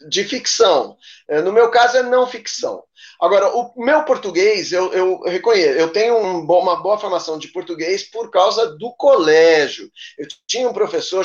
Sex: male